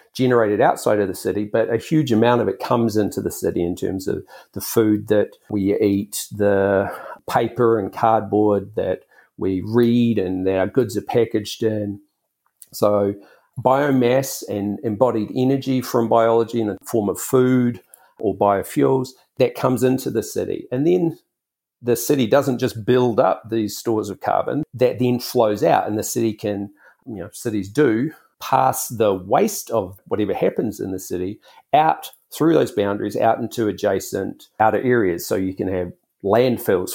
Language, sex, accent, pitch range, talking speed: English, male, Australian, 105-125 Hz, 165 wpm